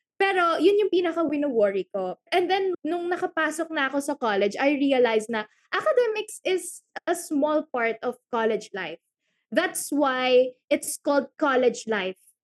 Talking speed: 150 wpm